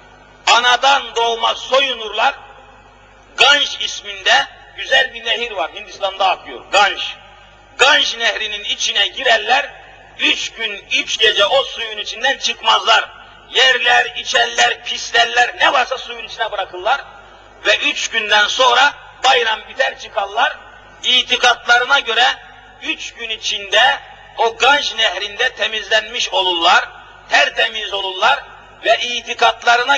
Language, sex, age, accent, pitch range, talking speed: Turkish, male, 50-69, native, 220-260 Hz, 105 wpm